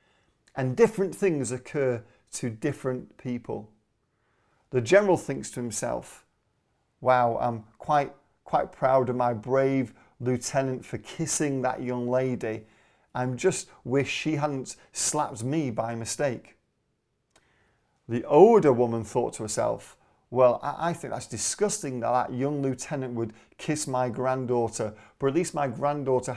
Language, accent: English, British